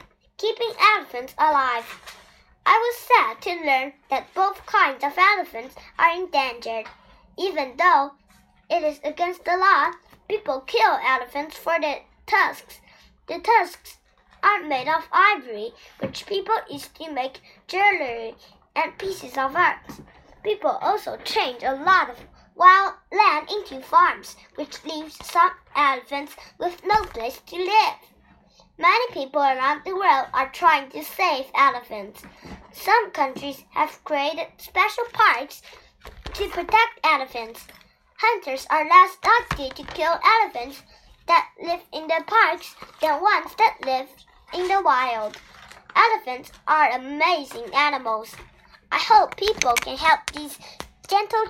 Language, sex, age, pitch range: Chinese, male, 10-29, 270-395 Hz